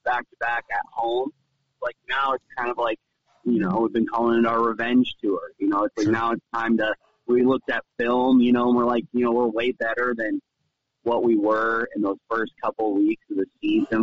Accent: American